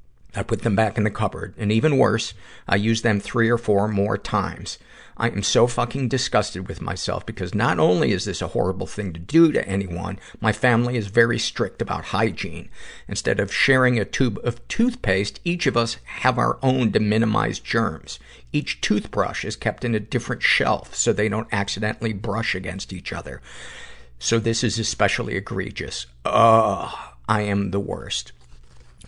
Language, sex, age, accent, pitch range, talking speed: English, male, 50-69, American, 95-125 Hz, 180 wpm